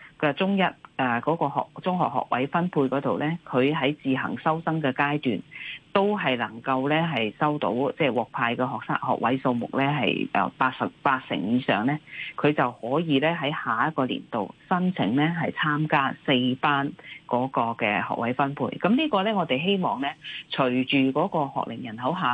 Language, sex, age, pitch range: Chinese, female, 30-49, 130-165 Hz